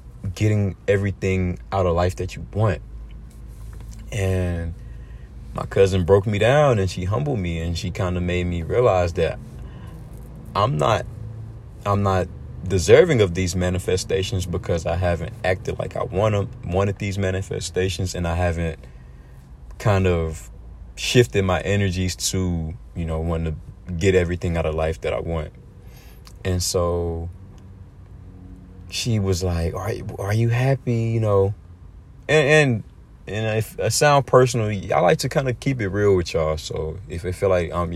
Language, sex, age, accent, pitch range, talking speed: English, male, 30-49, American, 85-105 Hz, 160 wpm